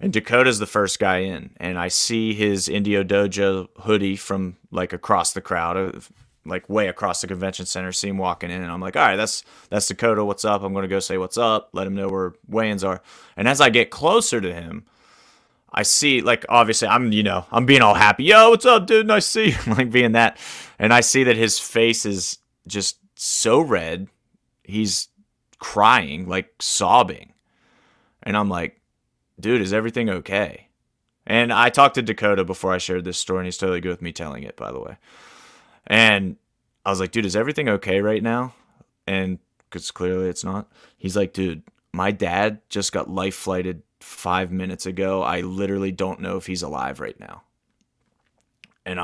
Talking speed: 195 wpm